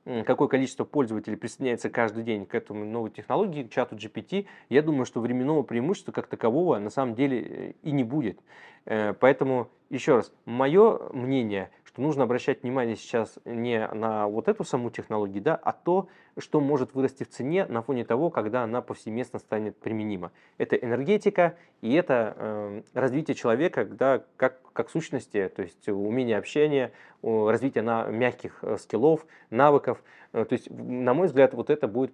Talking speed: 155 wpm